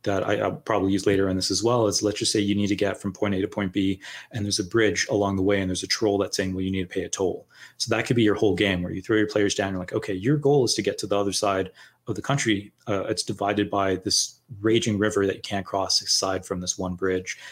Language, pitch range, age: English, 100-115 Hz, 30-49